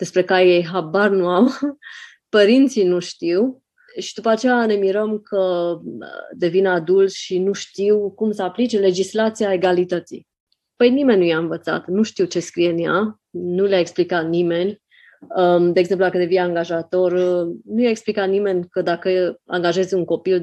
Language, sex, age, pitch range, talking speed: Romanian, female, 20-39, 180-220 Hz, 160 wpm